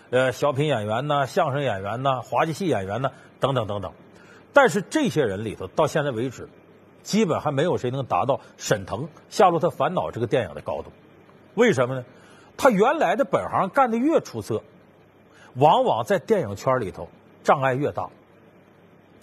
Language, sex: Chinese, male